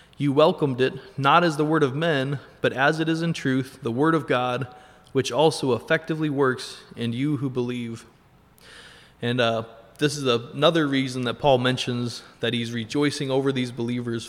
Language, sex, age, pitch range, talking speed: English, male, 20-39, 120-145 Hz, 175 wpm